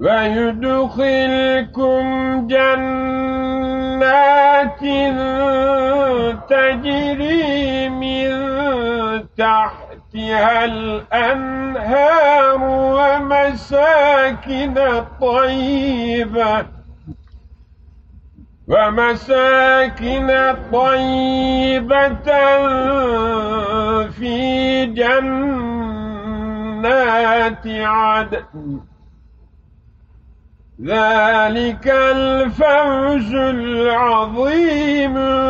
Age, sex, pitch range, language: 50-69, male, 230-275 Hz, Turkish